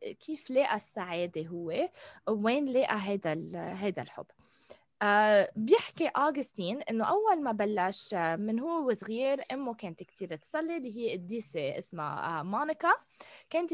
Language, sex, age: Arabic, female, 20-39